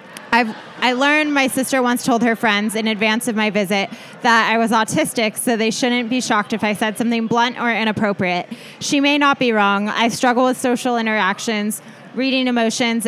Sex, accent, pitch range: female, American, 210-240 Hz